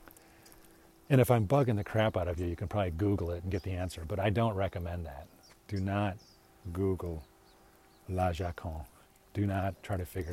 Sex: male